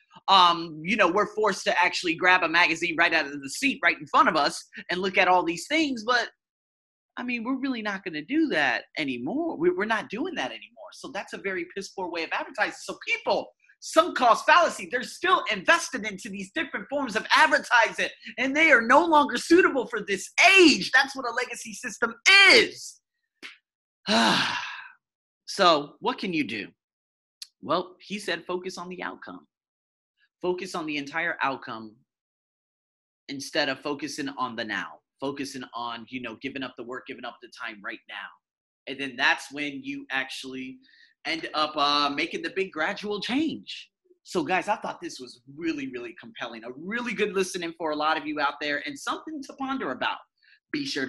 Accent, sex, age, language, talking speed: American, male, 30-49, English, 185 wpm